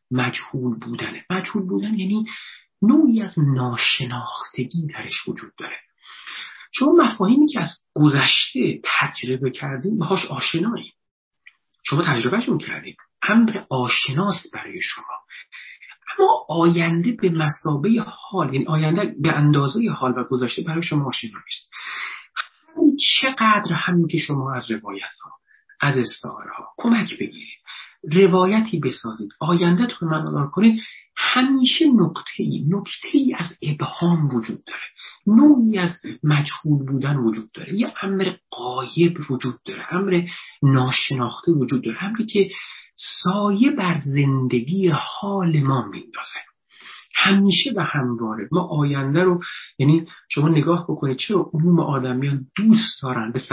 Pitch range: 135-205 Hz